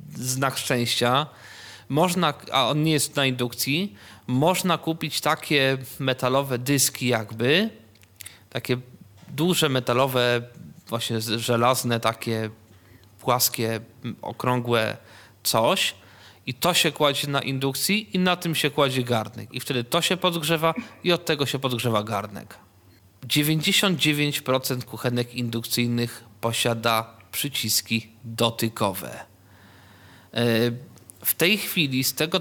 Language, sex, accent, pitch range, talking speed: Polish, male, native, 115-155 Hz, 105 wpm